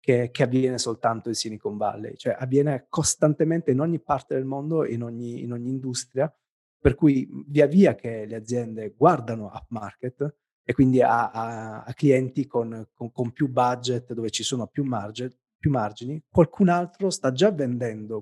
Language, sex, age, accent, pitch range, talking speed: English, male, 30-49, Italian, 115-140 Hz, 160 wpm